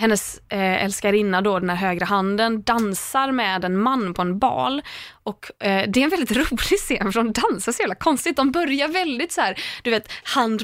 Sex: female